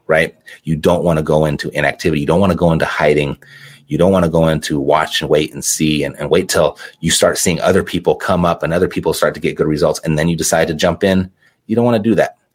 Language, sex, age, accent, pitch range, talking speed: English, male, 30-49, American, 80-95 Hz, 275 wpm